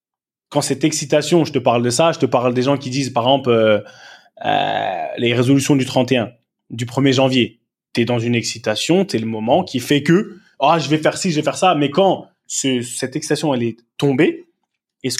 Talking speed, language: 220 wpm, French